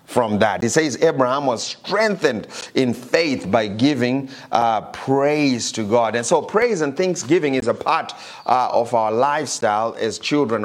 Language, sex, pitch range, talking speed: English, male, 115-140 Hz, 165 wpm